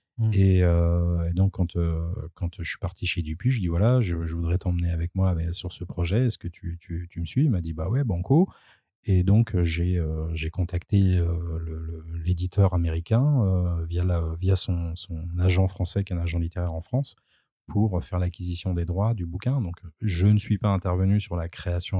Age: 30-49